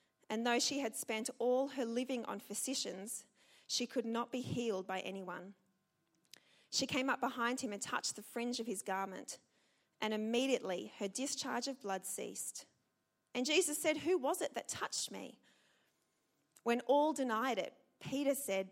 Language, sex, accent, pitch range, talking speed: English, female, Australian, 215-265 Hz, 165 wpm